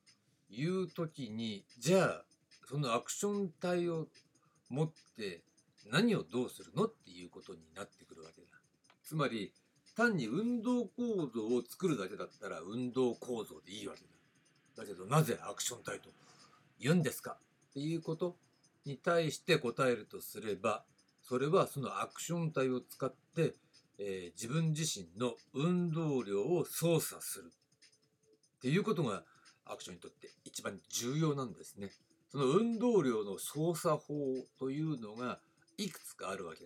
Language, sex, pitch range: Japanese, male, 120-170 Hz